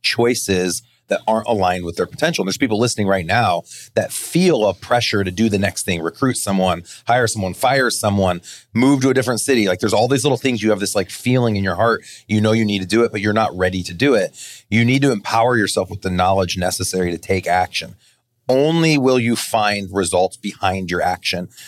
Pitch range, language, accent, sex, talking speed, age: 95-115 Hz, English, American, male, 220 wpm, 30-49